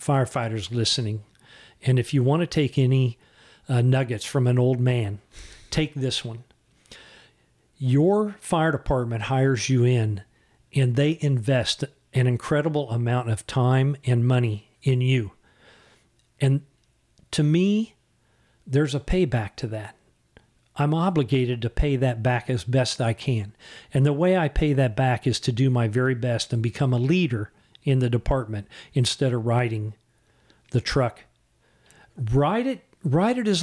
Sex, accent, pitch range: male, American, 120-150 Hz